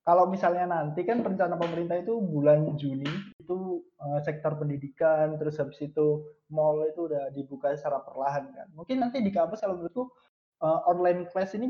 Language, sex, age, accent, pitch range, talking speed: Indonesian, male, 20-39, native, 150-195 Hz, 160 wpm